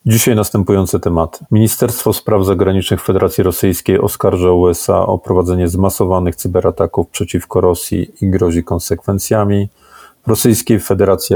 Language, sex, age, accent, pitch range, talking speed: Polish, male, 40-59, native, 90-100 Hz, 110 wpm